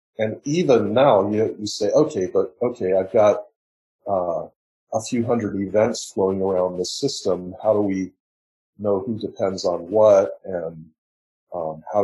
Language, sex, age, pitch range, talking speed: English, male, 40-59, 90-105 Hz, 150 wpm